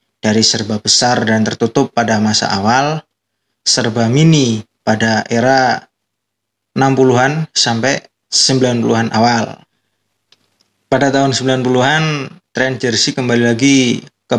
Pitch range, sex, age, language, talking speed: 110-130 Hz, male, 20-39, Indonesian, 100 wpm